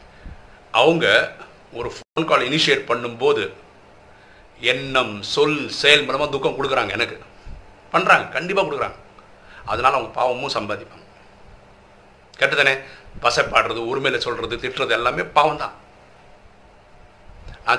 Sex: male